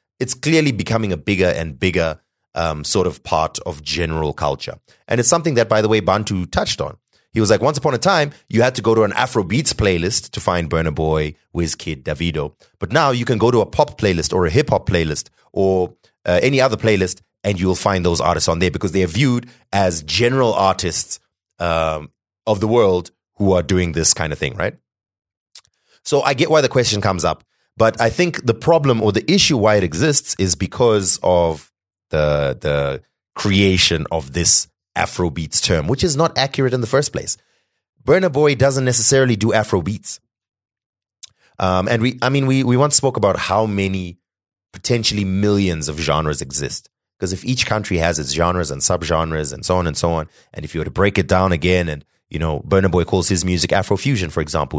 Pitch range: 85-120 Hz